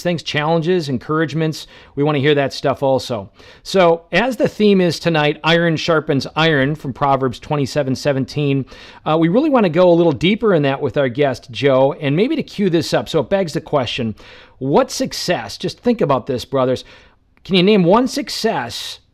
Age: 40-59